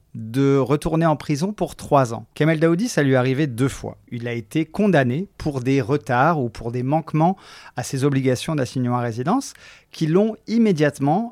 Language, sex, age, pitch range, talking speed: French, male, 40-59, 125-170 Hz, 185 wpm